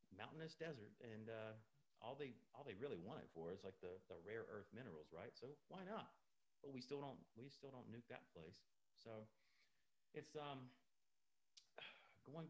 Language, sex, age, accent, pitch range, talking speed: English, male, 40-59, American, 90-120 Hz, 175 wpm